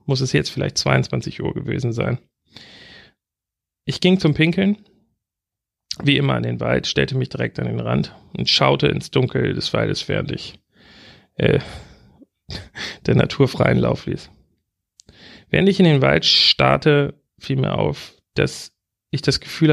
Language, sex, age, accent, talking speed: German, male, 40-59, German, 150 wpm